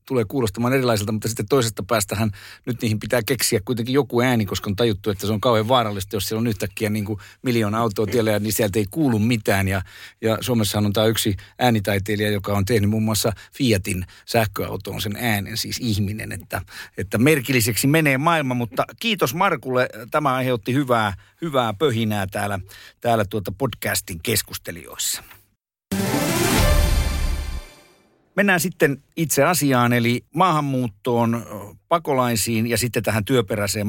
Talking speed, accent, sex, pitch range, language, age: 145 wpm, native, male, 100-120 Hz, Finnish, 50-69